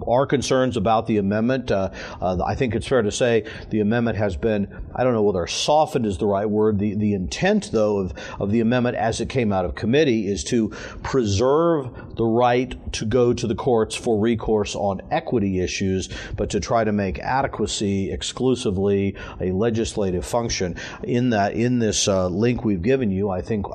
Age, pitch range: 50-69, 100-120 Hz